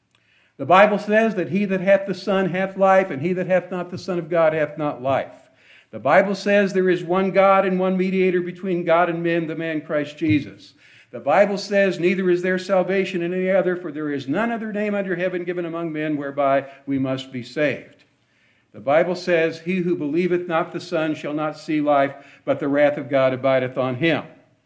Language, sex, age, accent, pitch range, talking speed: English, male, 60-79, American, 165-210 Hz, 215 wpm